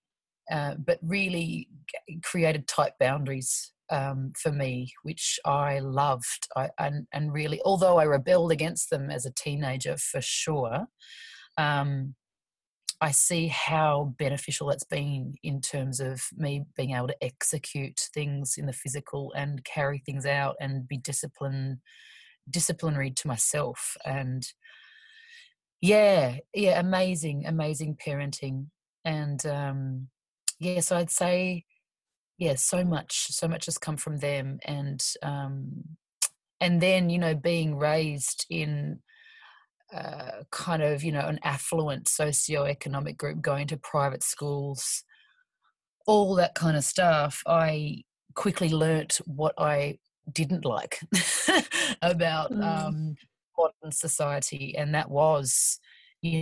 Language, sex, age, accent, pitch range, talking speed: English, female, 30-49, Australian, 140-170 Hz, 130 wpm